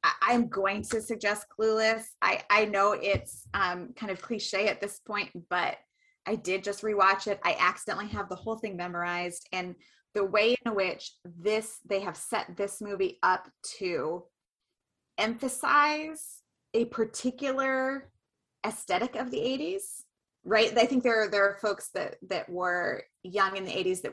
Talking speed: 160 wpm